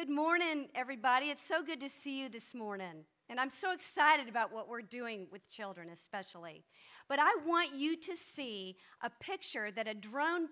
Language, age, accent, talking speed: English, 50-69, American, 190 wpm